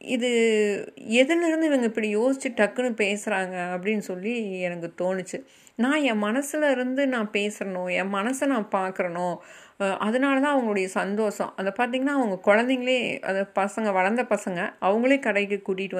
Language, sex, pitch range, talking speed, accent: Tamil, female, 190-245 Hz, 130 wpm, native